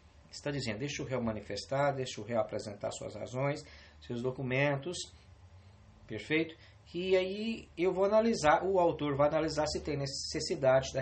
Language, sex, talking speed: English, male, 150 wpm